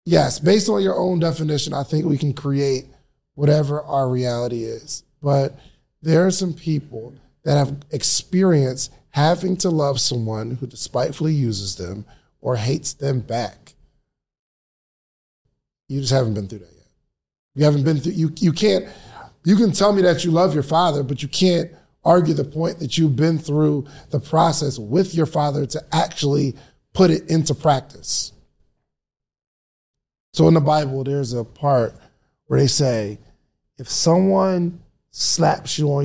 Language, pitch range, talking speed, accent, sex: English, 125-160 Hz, 155 wpm, American, male